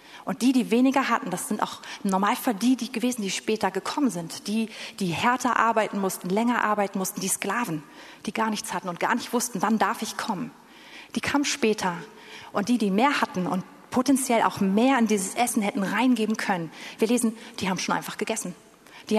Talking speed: 200 wpm